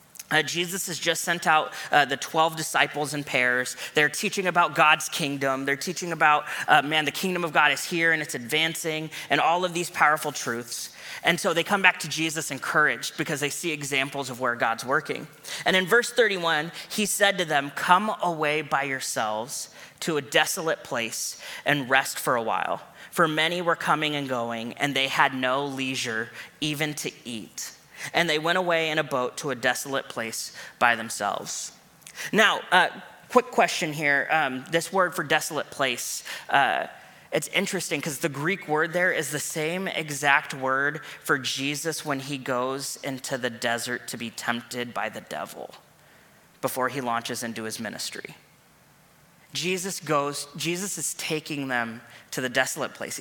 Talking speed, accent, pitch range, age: 175 wpm, American, 135-165 Hz, 20-39